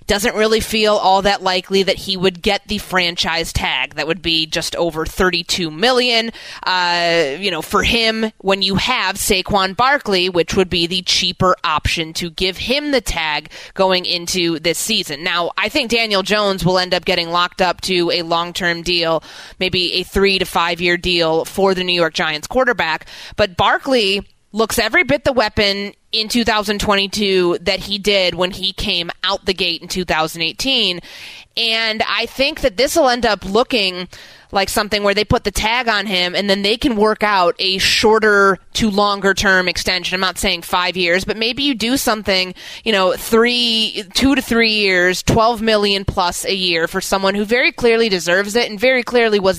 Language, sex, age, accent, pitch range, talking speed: English, female, 20-39, American, 180-220 Hz, 190 wpm